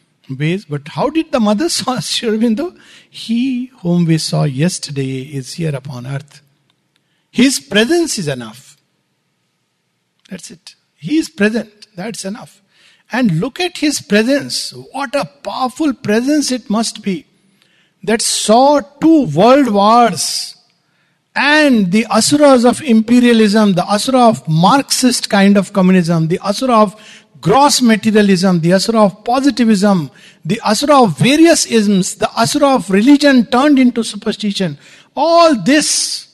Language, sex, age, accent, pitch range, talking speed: English, male, 60-79, Indian, 155-230 Hz, 135 wpm